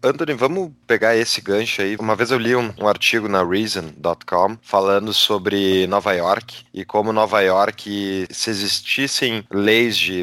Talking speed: 155 wpm